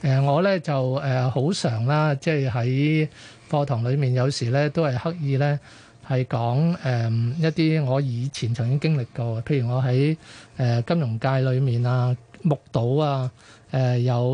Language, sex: Chinese, male